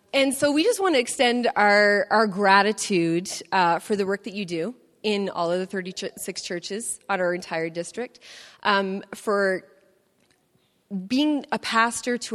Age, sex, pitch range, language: 30-49, female, 175-205 Hz, English